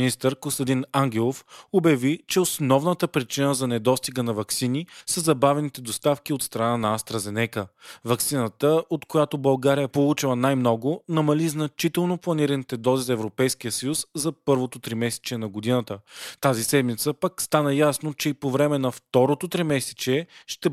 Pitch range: 120-150 Hz